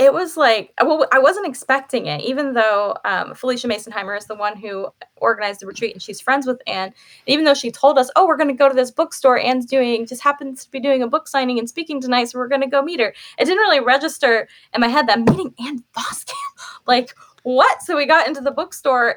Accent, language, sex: American, English, female